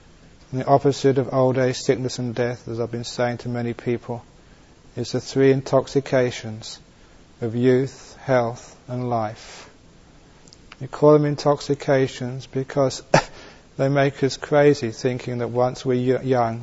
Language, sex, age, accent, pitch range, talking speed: English, male, 30-49, British, 120-135 Hz, 135 wpm